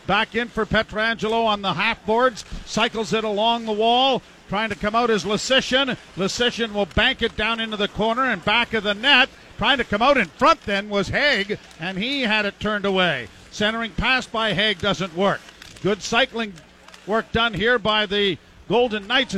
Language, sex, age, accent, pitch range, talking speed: English, male, 50-69, American, 195-230 Hz, 190 wpm